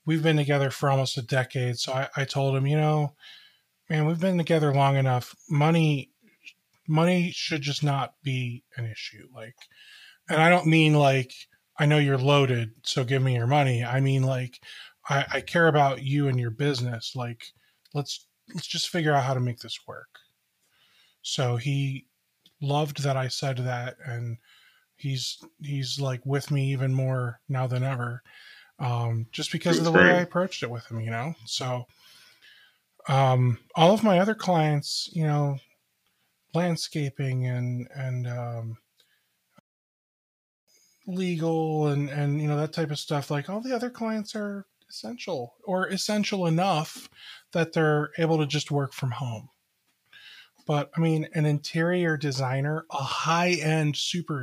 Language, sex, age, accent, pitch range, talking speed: English, male, 20-39, American, 130-160 Hz, 160 wpm